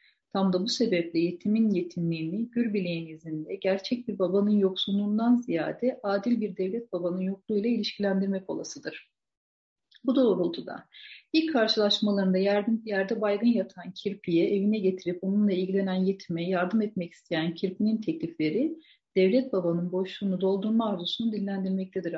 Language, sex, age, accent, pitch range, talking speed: Turkish, female, 40-59, native, 185-220 Hz, 120 wpm